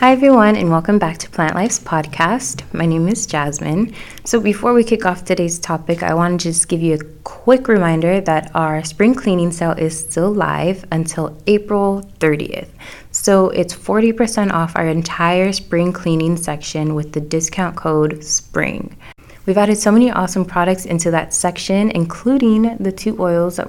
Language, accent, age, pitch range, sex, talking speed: English, American, 20-39, 160-195 Hz, female, 170 wpm